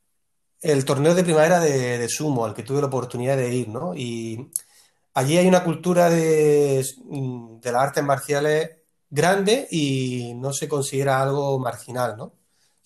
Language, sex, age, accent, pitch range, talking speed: Spanish, male, 30-49, Spanish, 120-145 Hz, 160 wpm